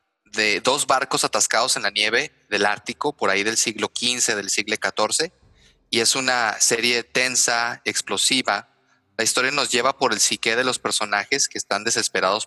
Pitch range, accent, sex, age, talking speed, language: 105-125 Hz, Mexican, male, 30-49, 175 wpm, Spanish